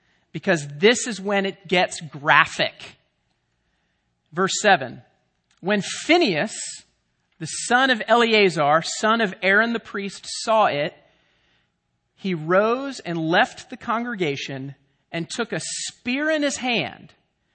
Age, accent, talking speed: 40-59, American, 120 wpm